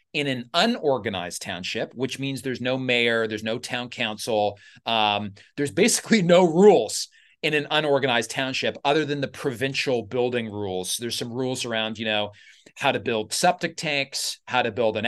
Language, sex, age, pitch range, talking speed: English, male, 30-49, 115-145 Hz, 170 wpm